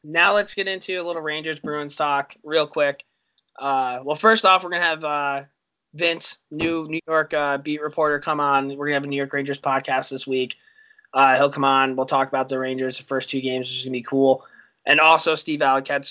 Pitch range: 135-160 Hz